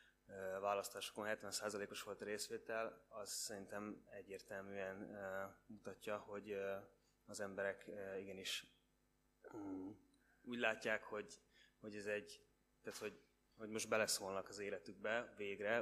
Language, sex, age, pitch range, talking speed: Hungarian, male, 20-39, 100-110 Hz, 120 wpm